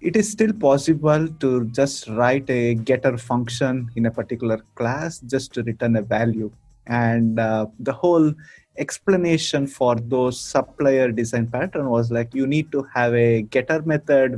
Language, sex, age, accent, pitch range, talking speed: English, male, 20-39, Indian, 115-145 Hz, 160 wpm